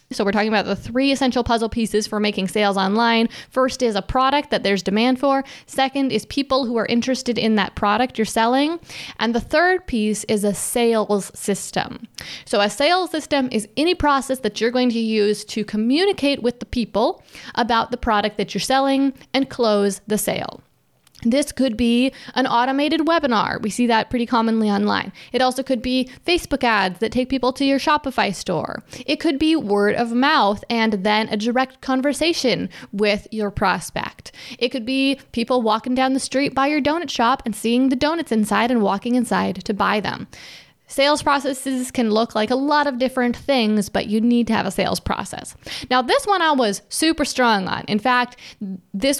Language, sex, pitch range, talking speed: English, female, 215-270 Hz, 195 wpm